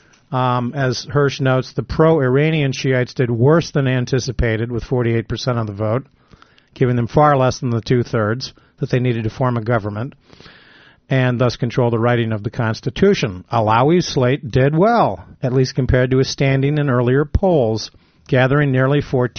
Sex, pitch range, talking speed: male, 115-140 Hz, 165 wpm